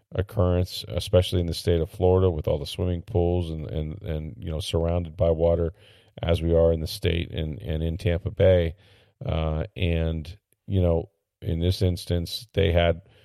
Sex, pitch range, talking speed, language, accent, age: male, 85-100 Hz, 180 wpm, English, American, 40-59